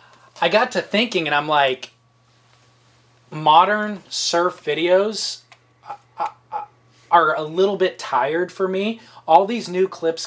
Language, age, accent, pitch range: English, 20-39, American, 150-185 Hz